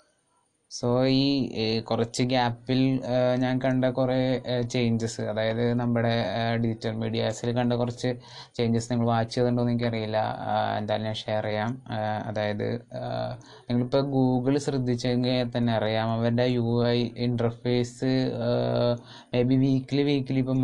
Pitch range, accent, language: 115-125 Hz, native, Malayalam